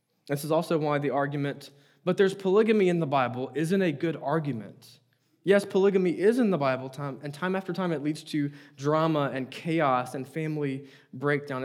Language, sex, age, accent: English, male, 20-39, American